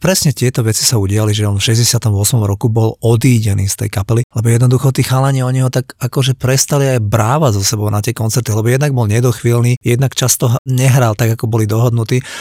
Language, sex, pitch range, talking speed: Slovak, male, 115-135 Hz, 205 wpm